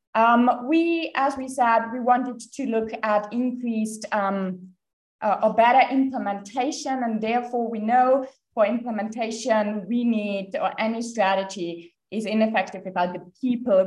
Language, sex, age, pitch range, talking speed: English, female, 20-39, 180-230 Hz, 140 wpm